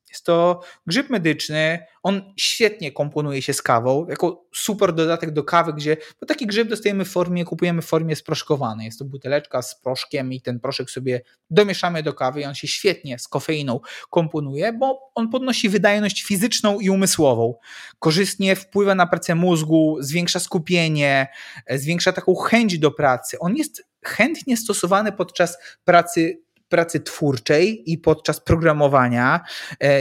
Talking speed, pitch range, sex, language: 150 wpm, 145-180 Hz, male, Polish